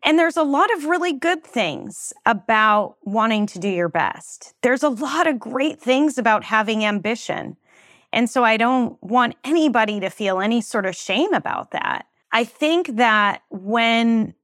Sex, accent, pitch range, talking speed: female, American, 195-245 Hz, 170 wpm